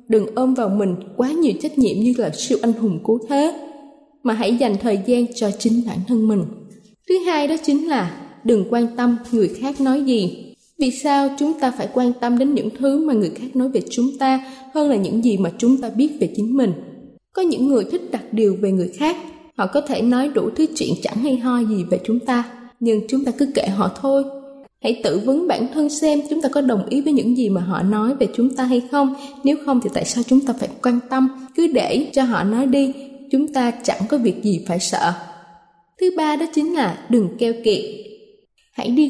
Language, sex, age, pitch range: Thai, female, 20-39, 225-280 Hz